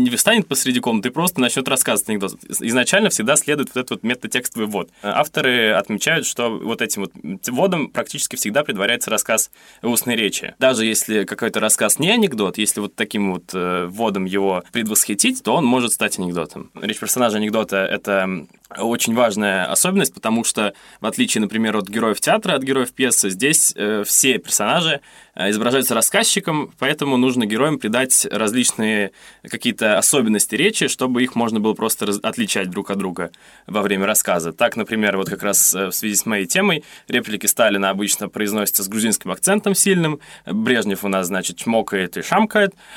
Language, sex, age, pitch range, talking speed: Russian, male, 20-39, 100-140 Hz, 160 wpm